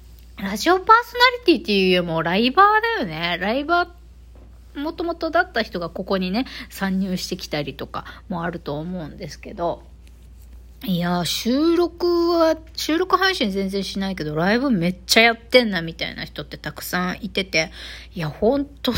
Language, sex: Japanese, female